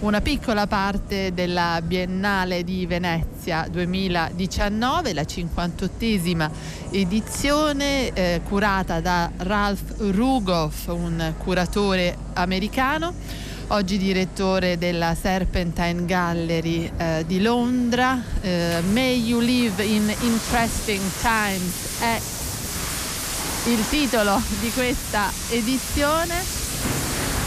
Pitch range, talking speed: 180-235 Hz, 85 wpm